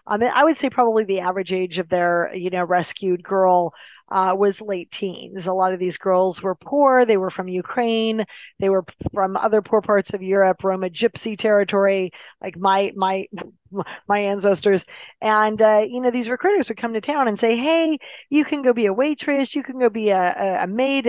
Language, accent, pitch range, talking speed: English, American, 185-230 Hz, 200 wpm